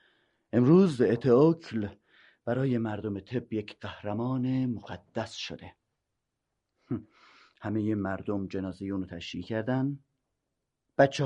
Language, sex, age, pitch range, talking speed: Persian, male, 30-49, 100-130 Hz, 85 wpm